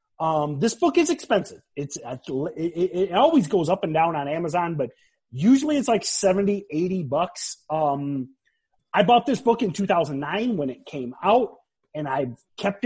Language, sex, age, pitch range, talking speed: English, male, 30-49, 140-205 Hz, 175 wpm